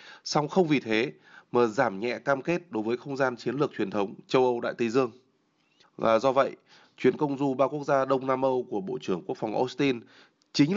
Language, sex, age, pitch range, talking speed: Vietnamese, male, 20-39, 120-150 Hz, 225 wpm